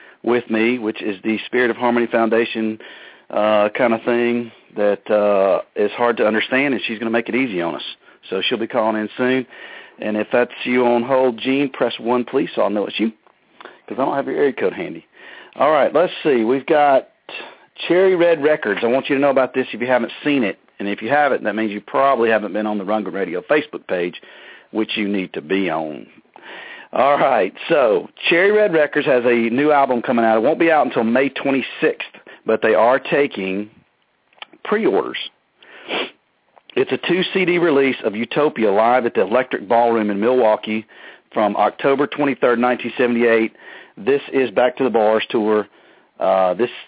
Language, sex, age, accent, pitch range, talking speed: English, male, 40-59, American, 110-135 Hz, 190 wpm